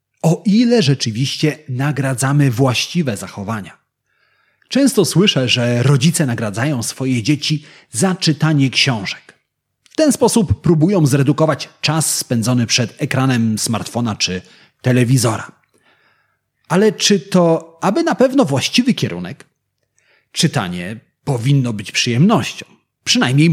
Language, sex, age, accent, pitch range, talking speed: Polish, male, 30-49, native, 125-185 Hz, 105 wpm